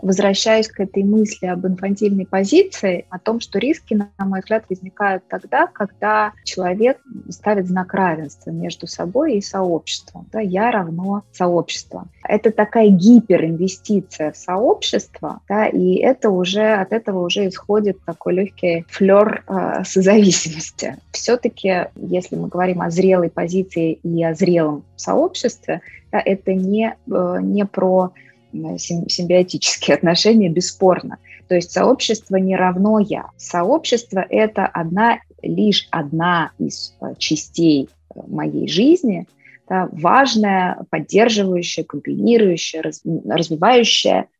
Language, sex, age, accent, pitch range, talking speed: Russian, female, 20-39, native, 175-210 Hz, 115 wpm